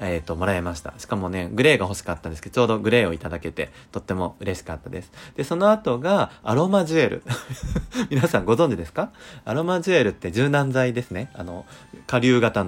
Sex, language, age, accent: male, Japanese, 30-49, native